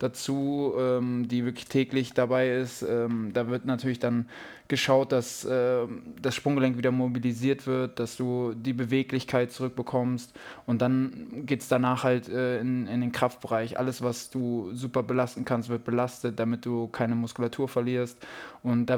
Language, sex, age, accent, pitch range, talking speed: German, male, 20-39, German, 115-130 Hz, 160 wpm